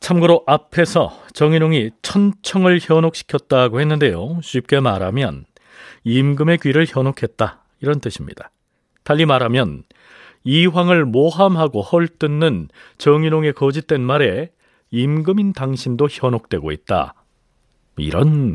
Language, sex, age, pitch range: Korean, male, 40-59, 125-170 Hz